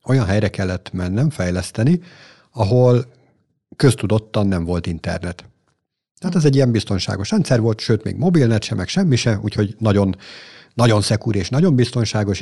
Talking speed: 150 wpm